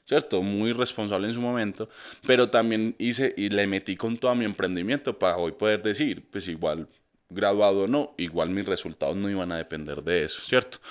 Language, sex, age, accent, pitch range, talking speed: Spanish, male, 20-39, Colombian, 100-130 Hz, 195 wpm